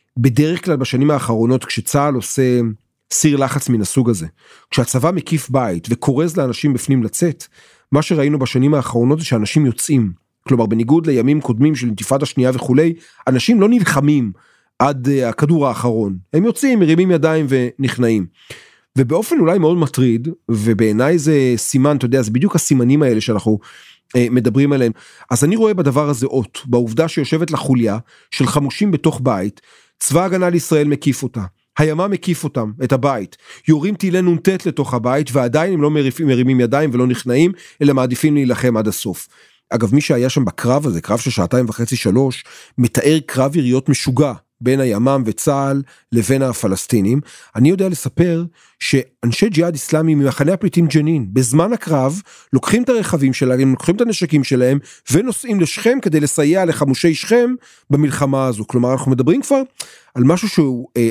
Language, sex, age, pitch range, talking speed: Hebrew, male, 30-49, 125-160 Hz, 145 wpm